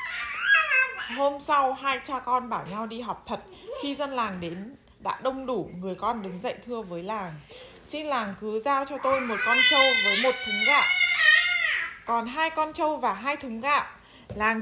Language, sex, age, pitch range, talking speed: Vietnamese, female, 20-39, 205-270 Hz, 190 wpm